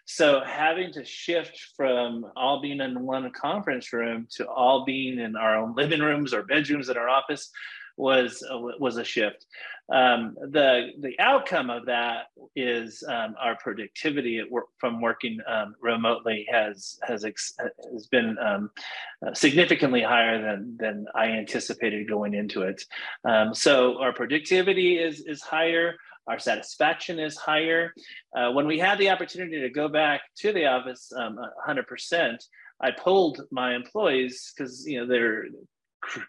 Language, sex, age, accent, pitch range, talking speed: English, male, 30-49, American, 115-160 Hz, 155 wpm